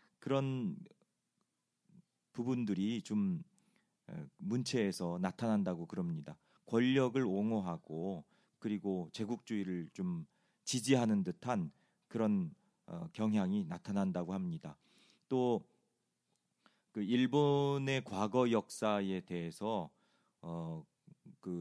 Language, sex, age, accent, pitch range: Korean, male, 40-59, native, 100-160 Hz